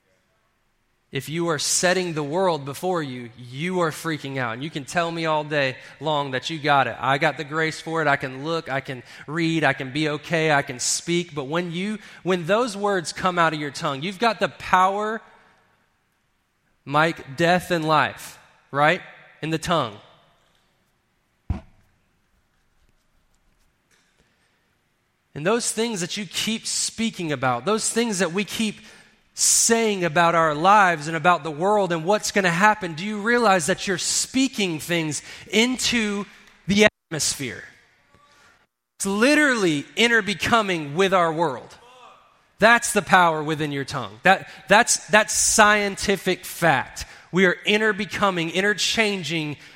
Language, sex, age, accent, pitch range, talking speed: English, male, 20-39, American, 150-205 Hz, 150 wpm